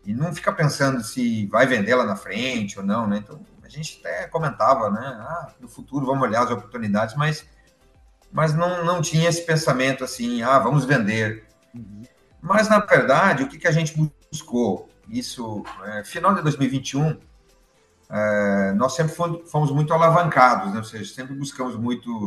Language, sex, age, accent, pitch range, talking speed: Portuguese, male, 40-59, Brazilian, 115-165 Hz, 170 wpm